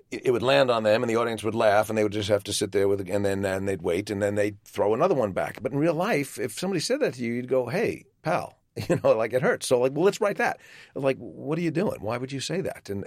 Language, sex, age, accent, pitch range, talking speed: English, male, 40-59, American, 105-150 Hz, 310 wpm